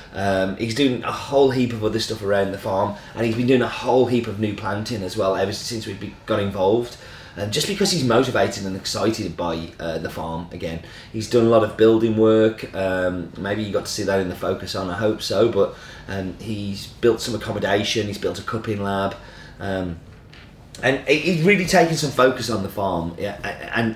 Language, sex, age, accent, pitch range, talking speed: English, male, 30-49, British, 95-115 Hz, 215 wpm